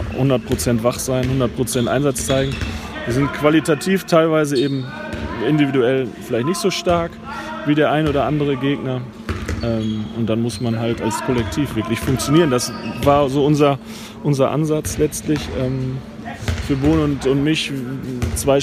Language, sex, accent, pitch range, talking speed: German, male, German, 125-160 Hz, 140 wpm